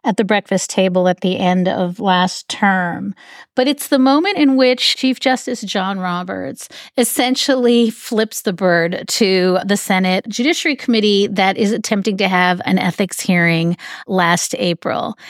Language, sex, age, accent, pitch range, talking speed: English, female, 40-59, American, 185-250 Hz, 155 wpm